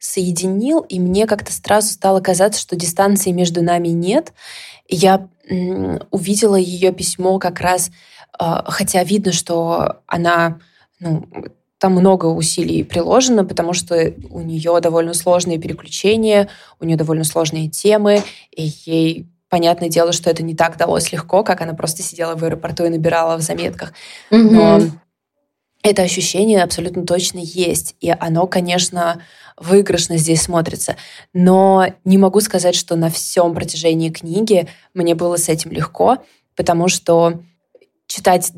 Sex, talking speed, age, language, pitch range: female, 135 wpm, 20-39, Russian, 170-200 Hz